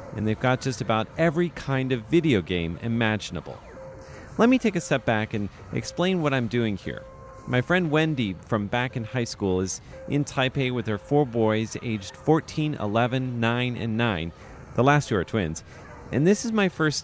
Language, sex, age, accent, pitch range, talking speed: German, male, 40-59, American, 105-140 Hz, 190 wpm